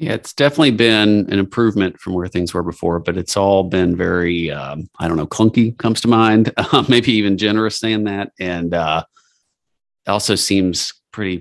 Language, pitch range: English, 85-100 Hz